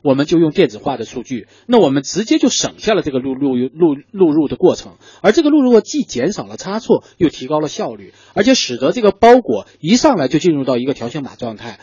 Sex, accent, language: male, native, Chinese